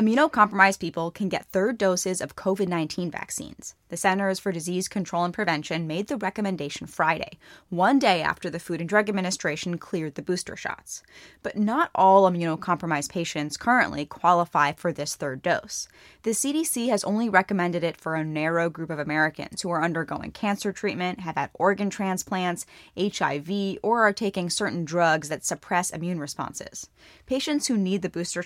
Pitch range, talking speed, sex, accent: 170-205 Hz, 165 wpm, female, American